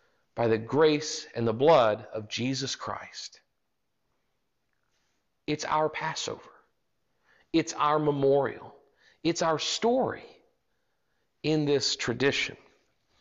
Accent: American